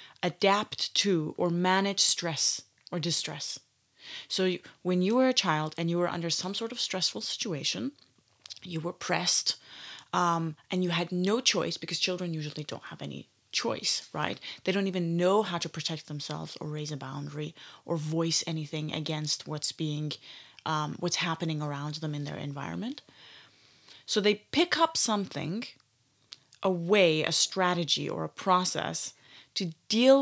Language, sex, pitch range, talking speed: English, female, 155-205 Hz, 160 wpm